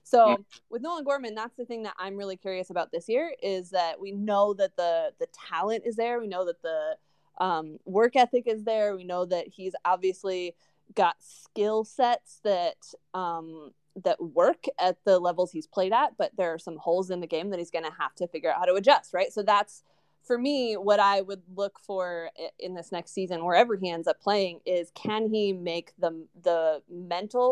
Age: 20-39